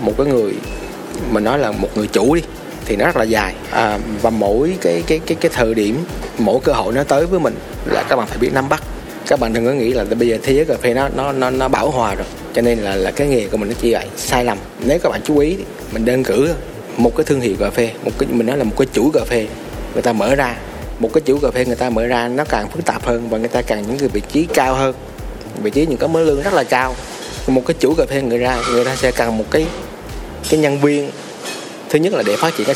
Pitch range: 110-130 Hz